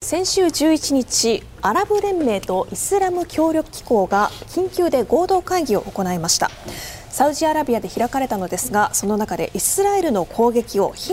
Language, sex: Japanese, female